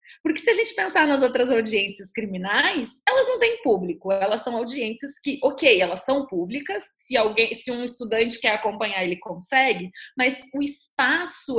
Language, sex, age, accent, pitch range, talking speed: Portuguese, female, 20-39, Brazilian, 210-280 Hz, 170 wpm